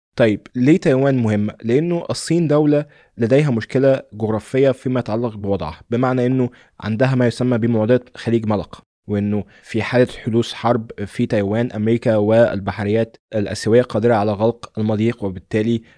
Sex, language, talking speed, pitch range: male, Arabic, 135 wpm, 105-120 Hz